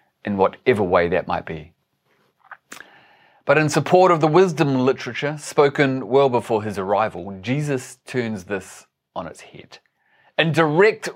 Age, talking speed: 30-49, 140 wpm